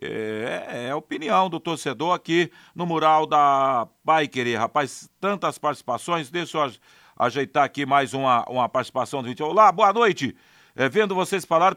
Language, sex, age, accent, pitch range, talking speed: Portuguese, male, 50-69, Brazilian, 140-190 Hz, 170 wpm